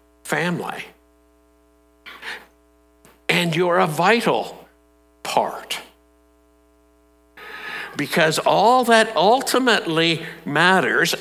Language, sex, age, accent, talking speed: English, male, 60-79, American, 60 wpm